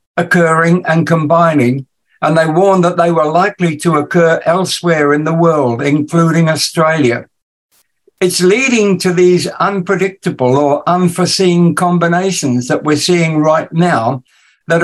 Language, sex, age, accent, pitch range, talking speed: English, male, 60-79, British, 150-180 Hz, 130 wpm